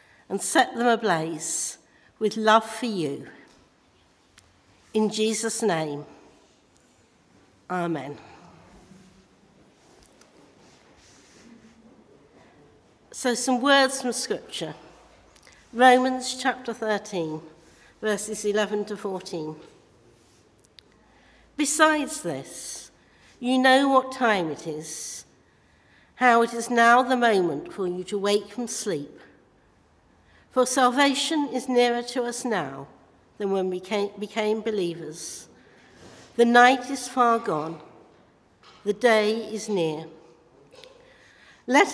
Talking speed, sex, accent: 95 wpm, female, British